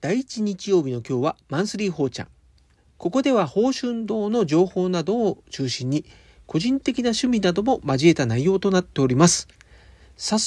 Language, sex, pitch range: Japanese, male, 130-210 Hz